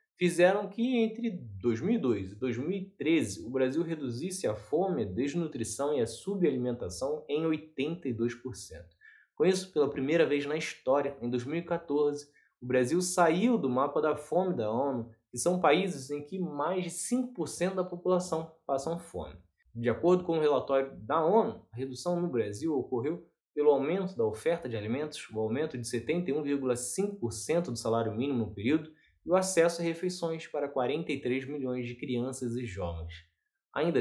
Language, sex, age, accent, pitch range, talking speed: Portuguese, male, 20-39, Brazilian, 120-170 Hz, 155 wpm